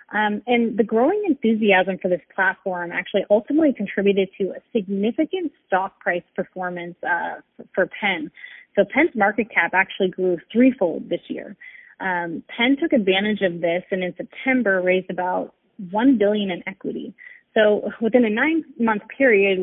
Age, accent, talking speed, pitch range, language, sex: 30-49, American, 155 wpm, 185-230 Hz, English, female